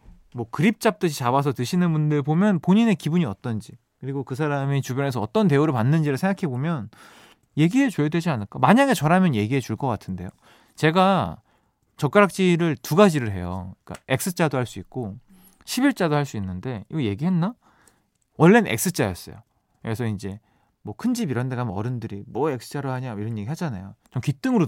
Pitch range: 110-175 Hz